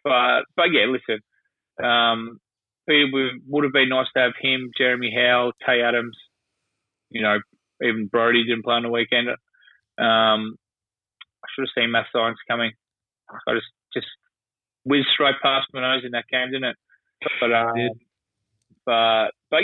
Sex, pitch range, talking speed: male, 110-130 Hz, 160 wpm